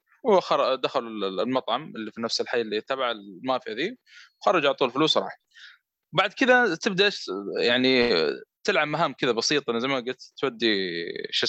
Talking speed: 150 wpm